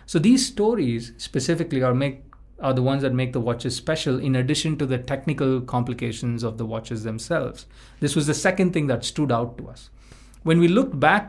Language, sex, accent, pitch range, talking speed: English, male, Indian, 120-145 Hz, 200 wpm